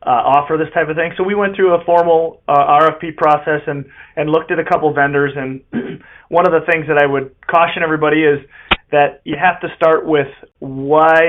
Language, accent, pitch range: English, American, 140-160 Hz